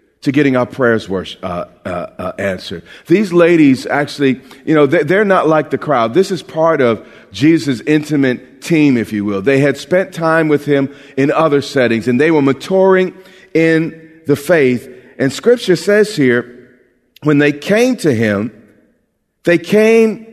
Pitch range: 130-180 Hz